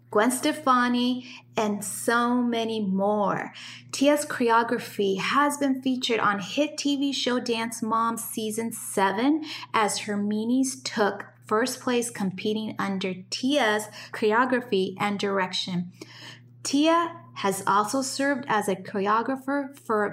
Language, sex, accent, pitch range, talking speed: English, female, American, 190-240 Hz, 115 wpm